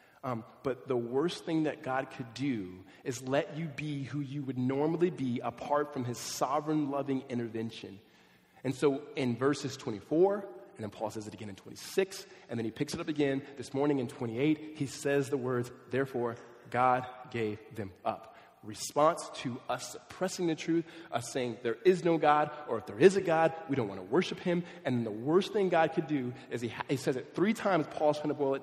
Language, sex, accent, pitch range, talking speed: English, male, American, 130-175 Hz, 210 wpm